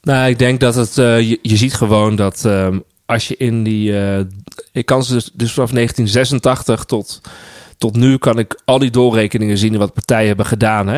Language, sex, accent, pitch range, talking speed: Dutch, male, Dutch, 110-130 Hz, 190 wpm